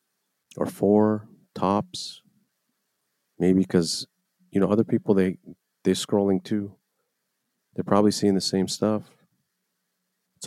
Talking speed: 115 wpm